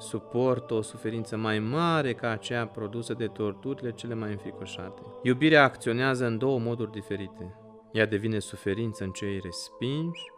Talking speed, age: 145 wpm, 30-49